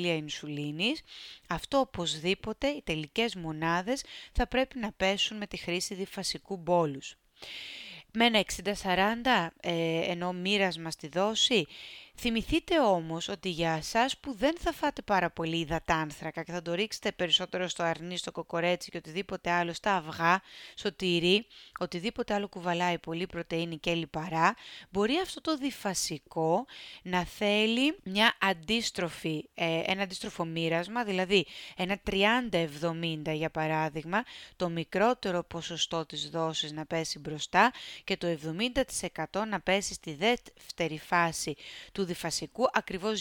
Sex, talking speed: female, 130 wpm